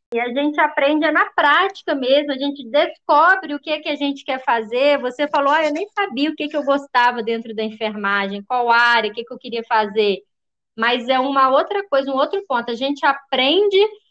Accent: Brazilian